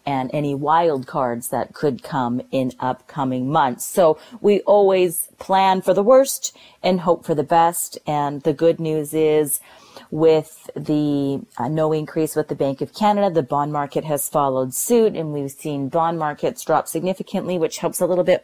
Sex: female